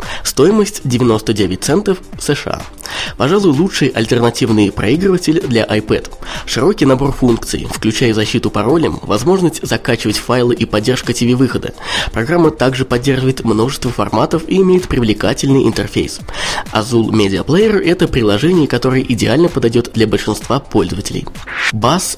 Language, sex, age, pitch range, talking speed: Russian, male, 20-39, 105-150 Hz, 120 wpm